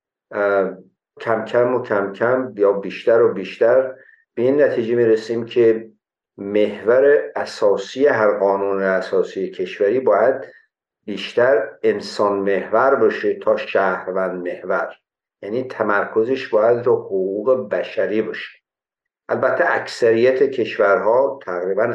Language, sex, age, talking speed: Persian, male, 60-79, 110 wpm